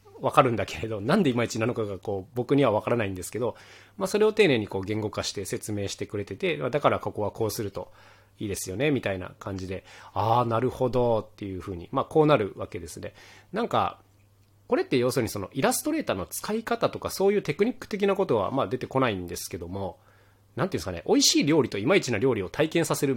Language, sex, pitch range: Japanese, male, 100-140 Hz